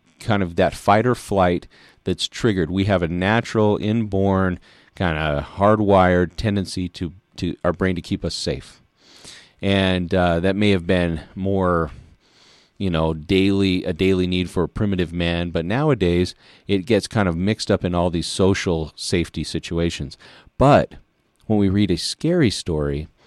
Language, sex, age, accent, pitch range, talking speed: English, male, 40-59, American, 85-100 Hz, 160 wpm